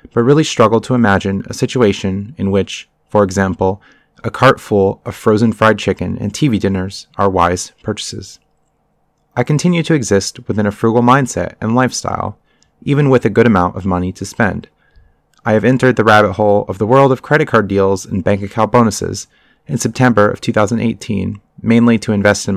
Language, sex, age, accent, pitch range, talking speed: English, male, 30-49, American, 95-120 Hz, 180 wpm